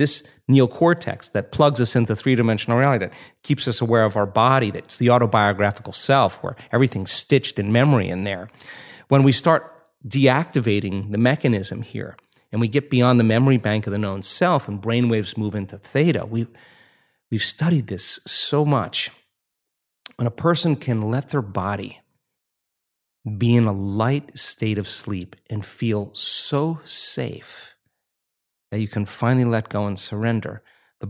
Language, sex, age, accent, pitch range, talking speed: English, male, 30-49, American, 105-130 Hz, 160 wpm